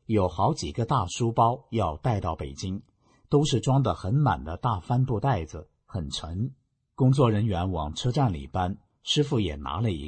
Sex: male